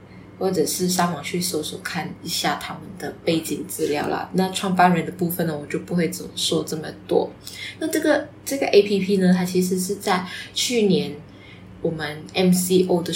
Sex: female